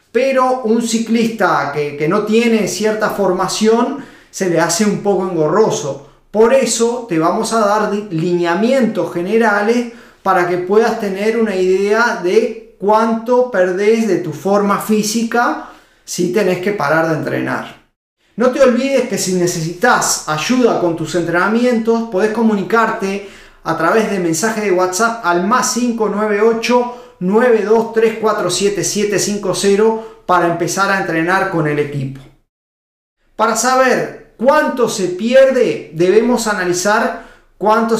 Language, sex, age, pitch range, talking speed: Spanish, male, 30-49, 175-230 Hz, 125 wpm